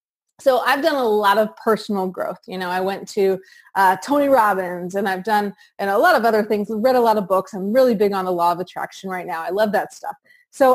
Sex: female